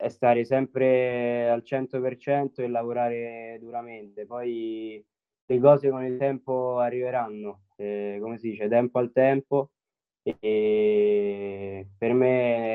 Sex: male